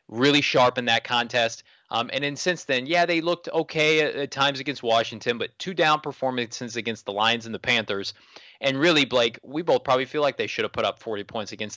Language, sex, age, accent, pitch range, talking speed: English, male, 20-39, American, 115-145 Hz, 230 wpm